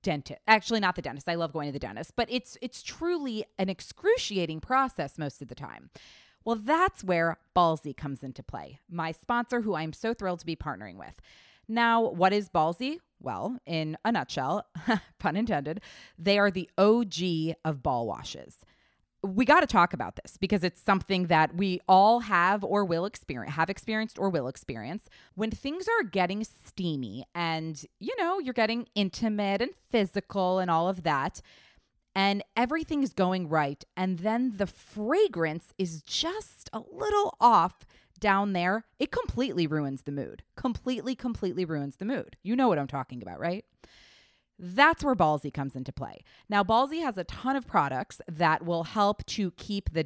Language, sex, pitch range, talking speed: English, female, 165-230 Hz, 175 wpm